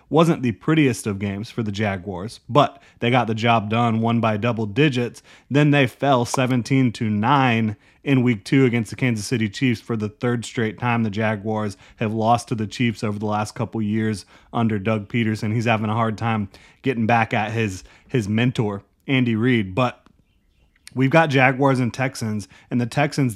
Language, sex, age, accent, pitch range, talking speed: English, male, 30-49, American, 110-130 Hz, 190 wpm